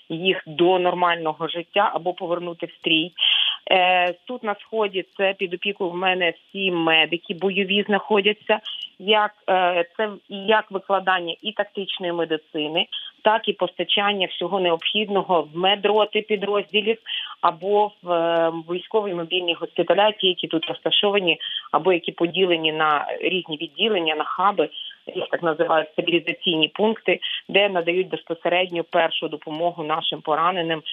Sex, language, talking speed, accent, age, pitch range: female, Ukrainian, 120 wpm, native, 30-49, 160-200 Hz